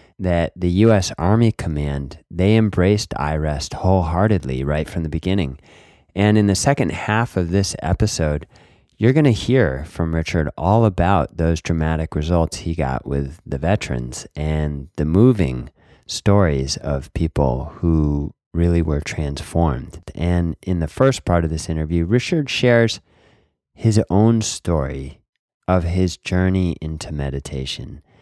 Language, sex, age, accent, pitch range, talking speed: English, male, 30-49, American, 75-100 Hz, 140 wpm